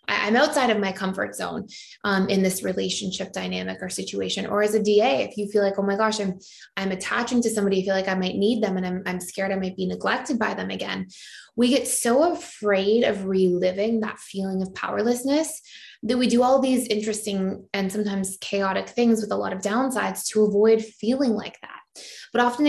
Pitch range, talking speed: 195-235 Hz, 210 wpm